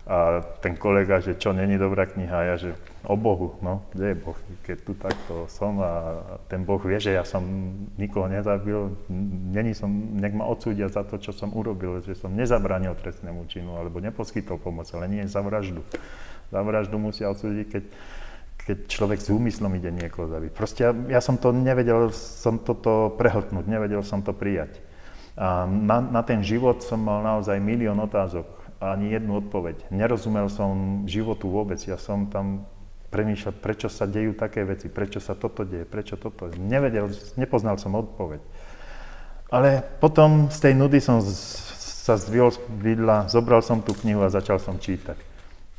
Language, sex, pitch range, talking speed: Slovak, male, 95-110 Hz, 170 wpm